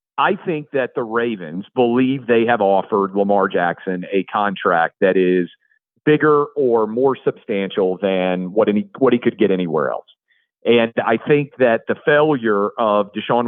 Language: English